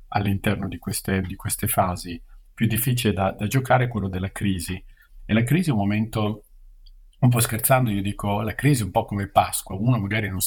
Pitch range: 100-120 Hz